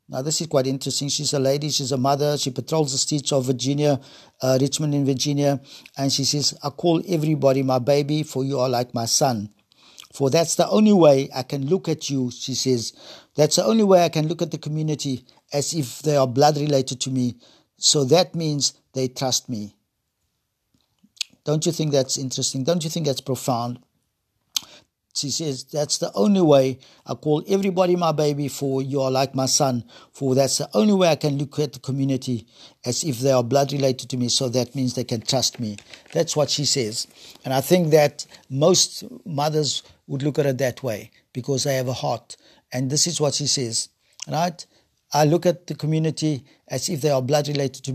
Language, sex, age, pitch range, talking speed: English, male, 50-69, 130-150 Hz, 205 wpm